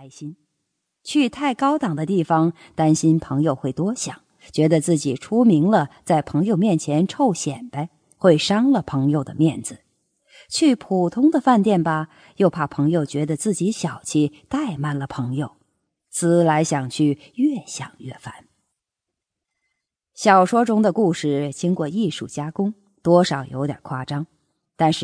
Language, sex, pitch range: English, female, 145-200 Hz